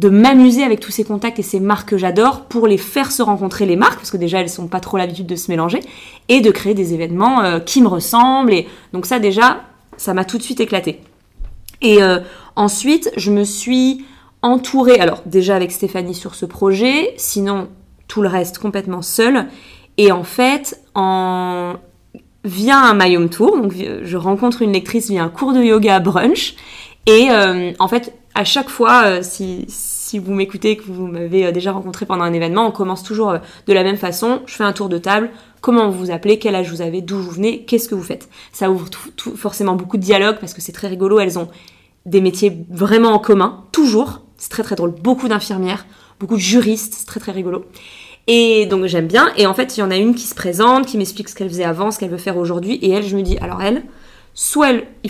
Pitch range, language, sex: 185-225 Hz, French, female